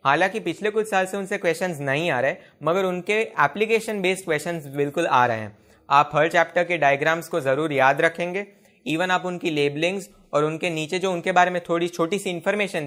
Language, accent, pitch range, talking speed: Hindi, native, 140-185 Hz, 200 wpm